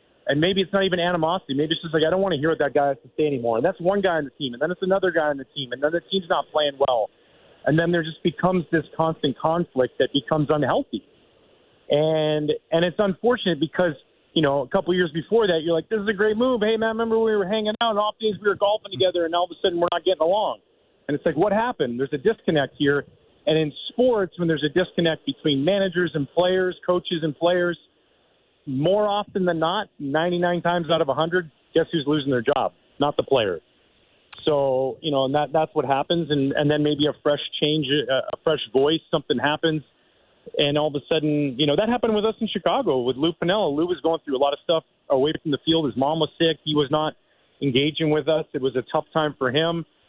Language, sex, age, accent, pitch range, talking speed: English, male, 40-59, American, 145-180 Hz, 245 wpm